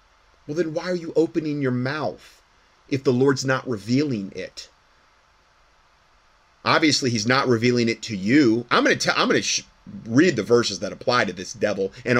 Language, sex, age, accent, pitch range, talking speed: English, male, 30-49, American, 110-170 Hz, 170 wpm